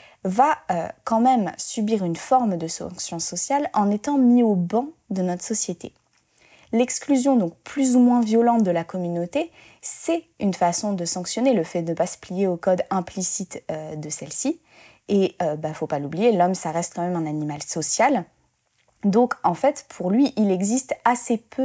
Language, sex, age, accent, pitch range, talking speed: French, female, 20-39, French, 175-235 Hz, 190 wpm